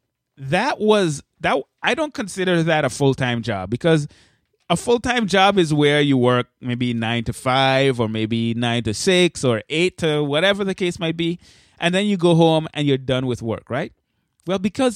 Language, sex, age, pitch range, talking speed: English, male, 20-39, 130-180 Hz, 195 wpm